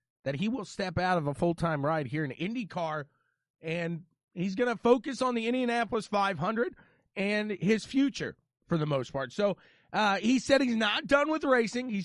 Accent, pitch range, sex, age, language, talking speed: American, 165-215 Hz, male, 30-49, English, 190 wpm